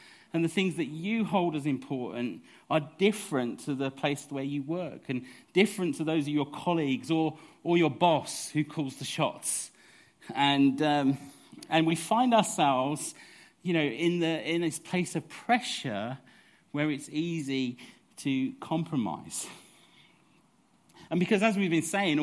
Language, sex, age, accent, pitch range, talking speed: English, male, 40-59, British, 145-185 Hz, 155 wpm